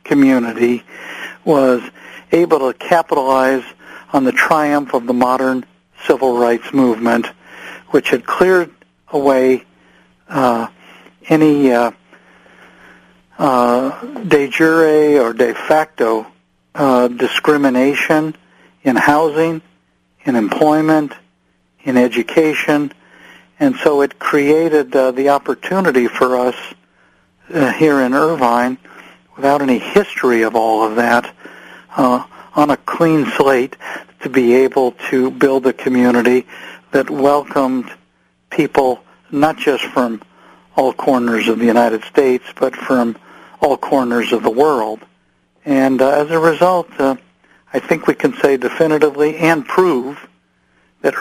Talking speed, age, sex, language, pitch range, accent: 120 wpm, 60-79, male, English, 120-150 Hz, American